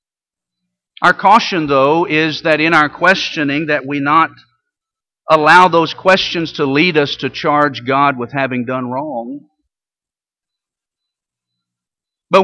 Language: English